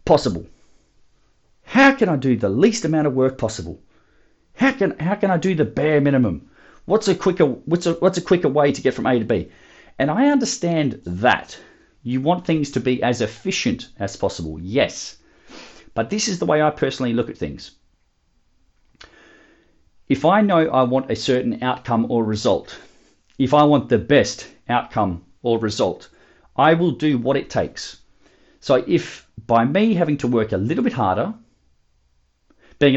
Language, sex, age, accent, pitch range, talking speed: English, male, 40-59, Australian, 110-150 Hz, 175 wpm